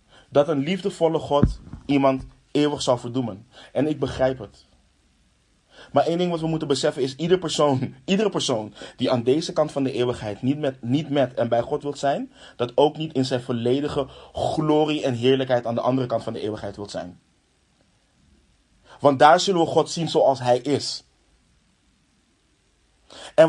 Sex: male